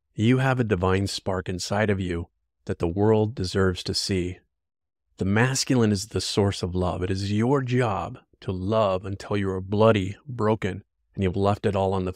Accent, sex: American, male